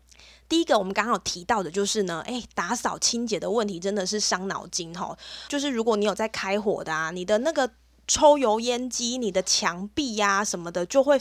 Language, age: Chinese, 20-39